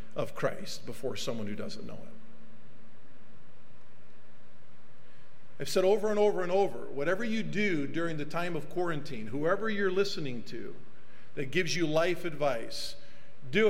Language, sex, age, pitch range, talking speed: English, male, 50-69, 150-195 Hz, 145 wpm